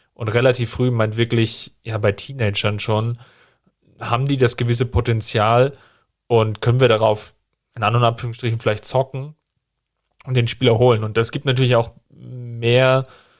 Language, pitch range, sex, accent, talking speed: German, 110-125 Hz, male, German, 150 wpm